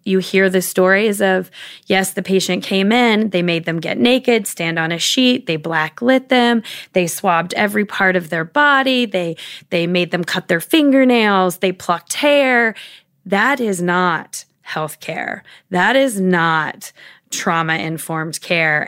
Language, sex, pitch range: English, female, 165-210 Hz